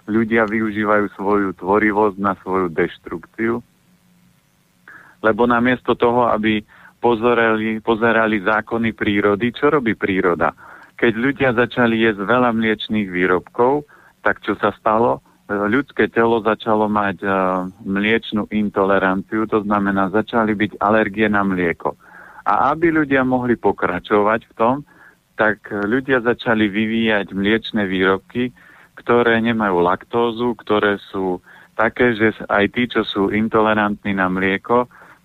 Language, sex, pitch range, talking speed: Slovak, male, 100-115 Hz, 115 wpm